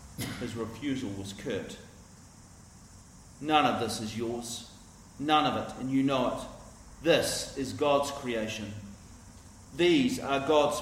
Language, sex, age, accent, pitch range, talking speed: English, male, 40-59, Australian, 105-140 Hz, 130 wpm